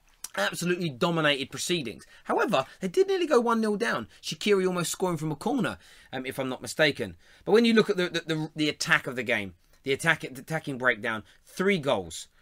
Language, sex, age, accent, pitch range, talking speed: English, male, 30-49, British, 130-170 Hz, 185 wpm